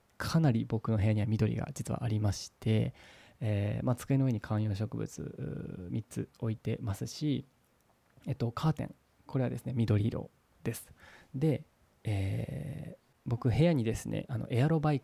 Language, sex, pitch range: Japanese, male, 110-145 Hz